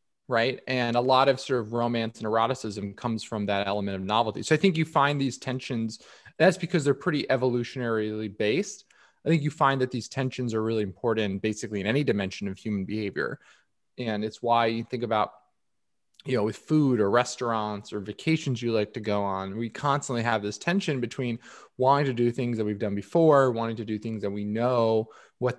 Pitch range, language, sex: 110-130 Hz, English, male